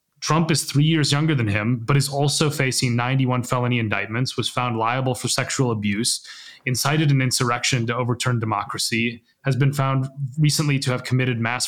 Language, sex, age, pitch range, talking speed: English, male, 30-49, 120-150 Hz, 175 wpm